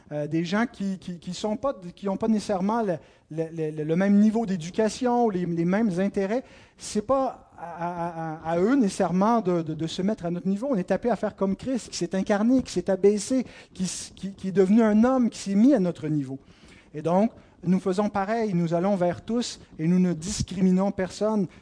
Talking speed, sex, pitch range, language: 220 wpm, male, 155-215 Hz, French